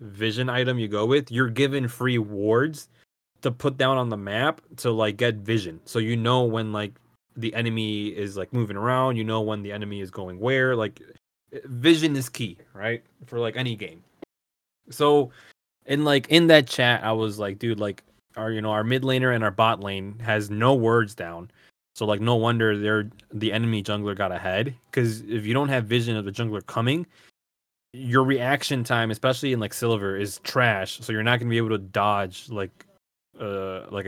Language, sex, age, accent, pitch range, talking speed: English, male, 20-39, American, 105-125 Hz, 195 wpm